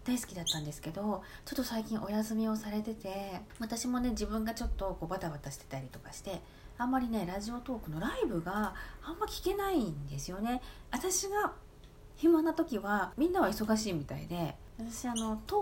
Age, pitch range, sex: 40-59, 145-220 Hz, female